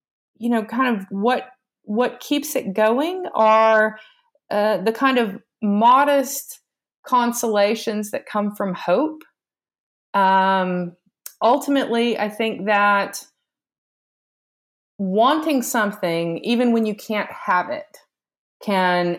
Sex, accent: female, American